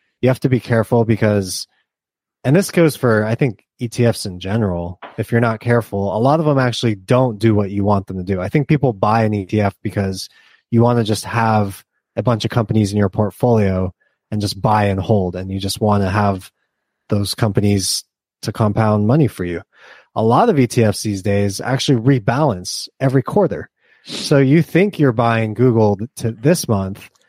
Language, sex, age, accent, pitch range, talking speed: English, male, 20-39, American, 105-130 Hz, 195 wpm